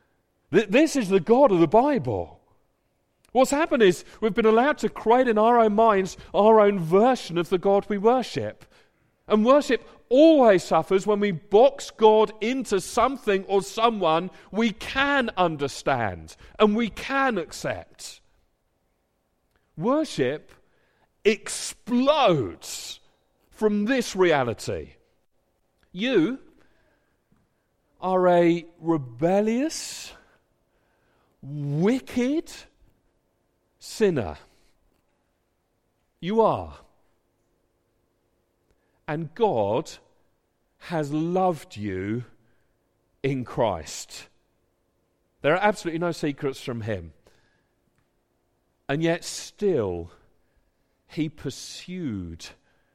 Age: 40-59